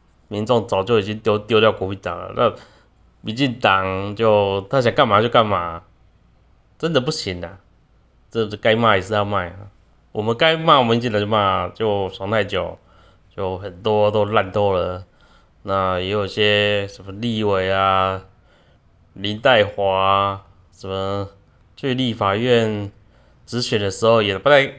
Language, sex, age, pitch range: Chinese, male, 20-39, 95-115 Hz